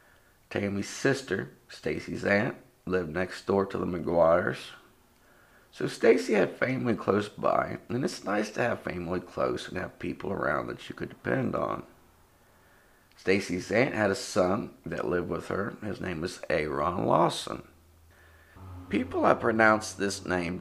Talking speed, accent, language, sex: 150 wpm, American, English, male